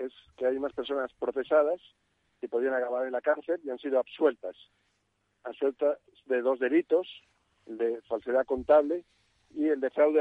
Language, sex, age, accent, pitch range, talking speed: Spanish, male, 50-69, Spanish, 105-140 Hz, 165 wpm